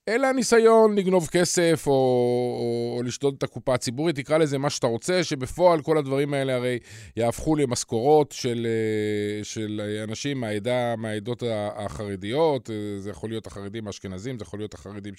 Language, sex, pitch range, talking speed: Hebrew, male, 115-145 Hz, 145 wpm